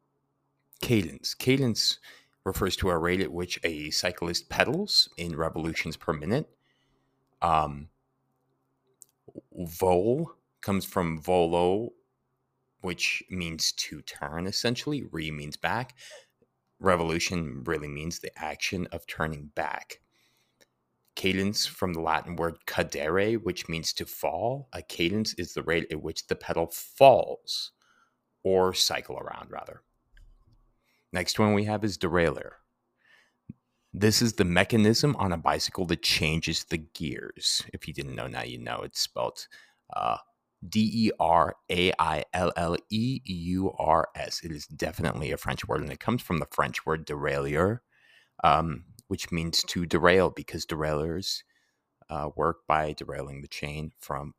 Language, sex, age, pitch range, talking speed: English, male, 30-49, 80-100 Hz, 130 wpm